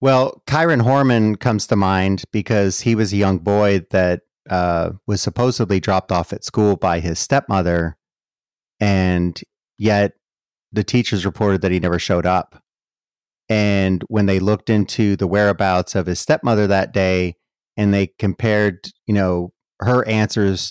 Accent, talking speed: American, 150 wpm